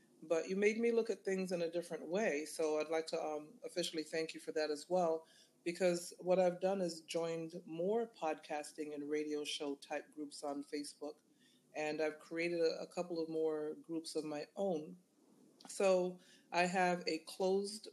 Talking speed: 180 wpm